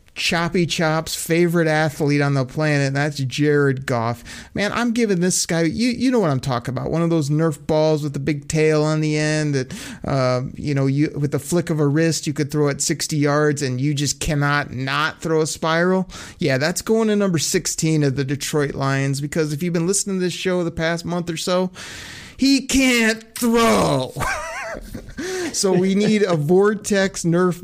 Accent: American